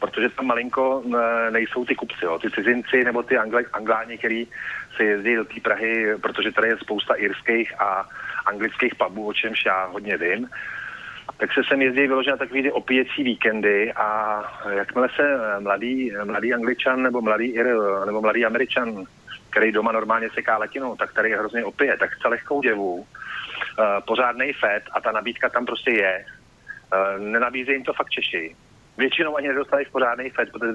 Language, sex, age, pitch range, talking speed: Slovak, male, 40-59, 105-125 Hz, 170 wpm